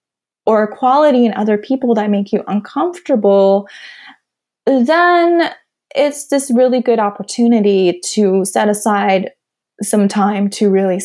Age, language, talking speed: 20-39, English, 120 wpm